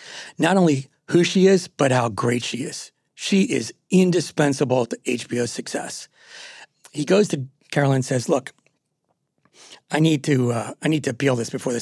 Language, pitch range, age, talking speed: English, 130-160 Hz, 40-59, 175 wpm